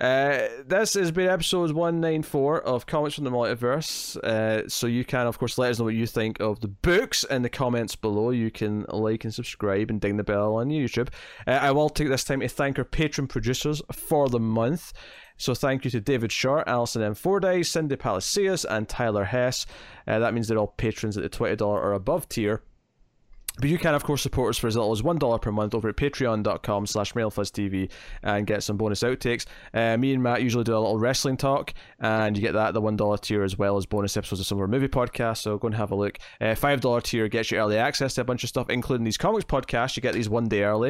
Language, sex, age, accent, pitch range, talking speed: English, male, 20-39, British, 105-135 Hz, 240 wpm